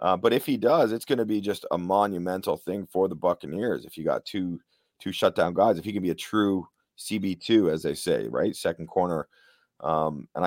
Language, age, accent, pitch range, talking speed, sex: English, 30-49, American, 85-110 Hz, 220 wpm, male